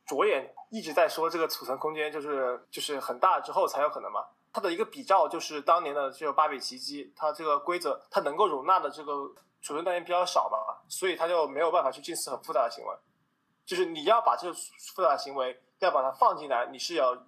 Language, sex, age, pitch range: Chinese, male, 20-39, 145-215 Hz